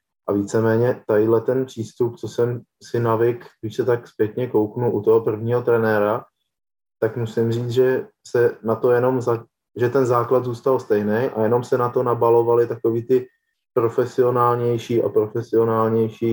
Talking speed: 160 wpm